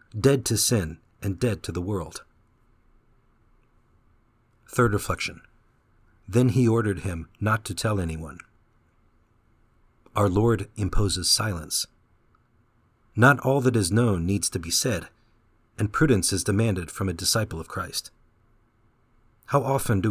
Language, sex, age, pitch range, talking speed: English, male, 50-69, 95-120 Hz, 130 wpm